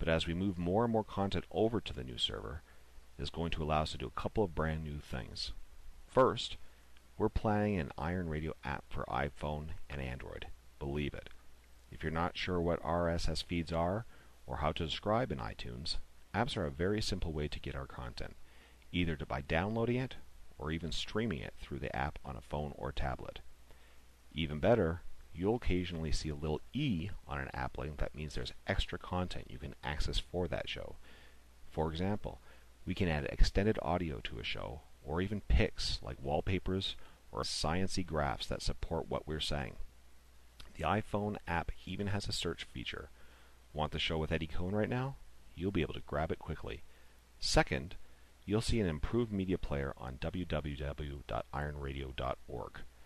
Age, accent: 40-59, American